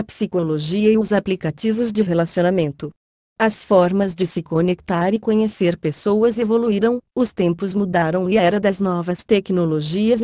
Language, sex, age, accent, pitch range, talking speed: Portuguese, female, 30-49, Brazilian, 175-220 Hz, 145 wpm